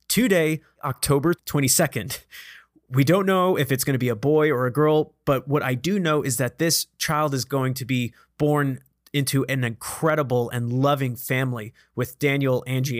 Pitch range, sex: 130-160 Hz, male